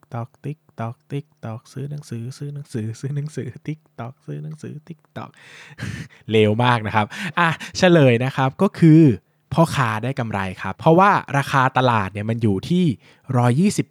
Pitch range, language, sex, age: 115-150 Hz, Thai, male, 20-39